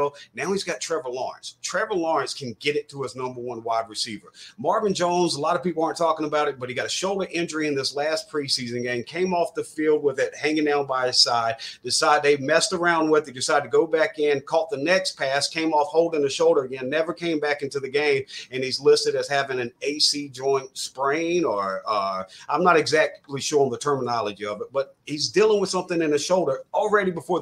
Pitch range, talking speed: 140-210 Hz, 230 wpm